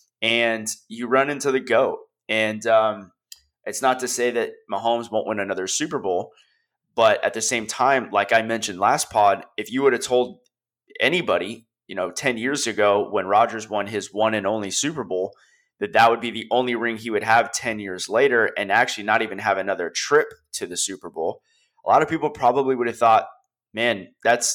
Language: English